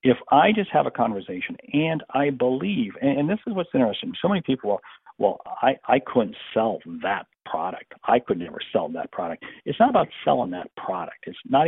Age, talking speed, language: 50-69, 205 wpm, English